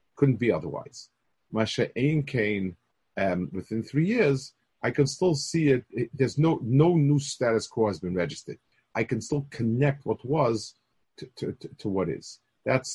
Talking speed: 165 wpm